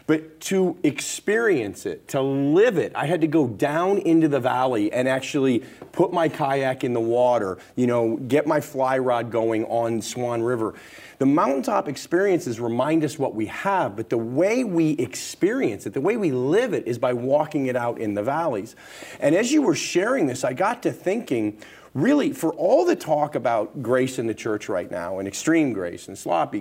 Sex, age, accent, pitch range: male, 40-59, American, 110-150 Hz